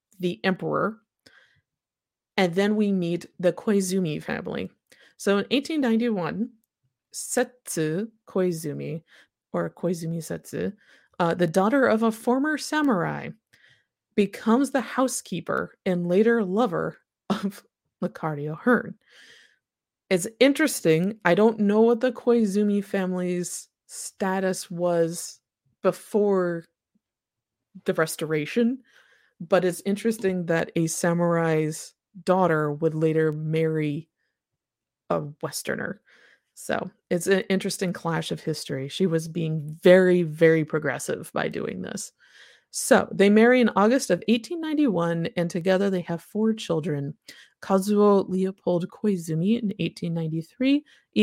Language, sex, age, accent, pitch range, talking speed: English, female, 20-39, American, 165-215 Hz, 110 wpm